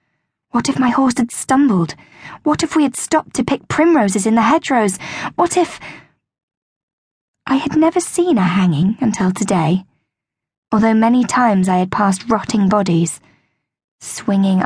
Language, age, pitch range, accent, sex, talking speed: English, 10-29, 185-255 Hz, British, female, 145 wpm